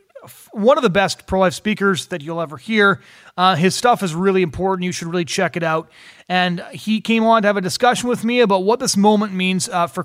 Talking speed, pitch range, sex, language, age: 235 wpm, 165-205 Hz, male, English, 30-49